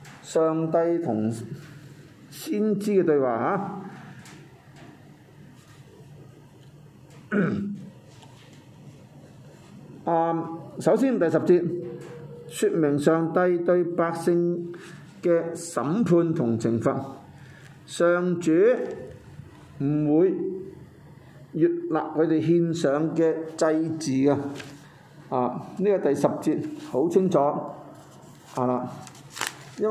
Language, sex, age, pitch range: Chinese, male, 50-69, 145-175 Hz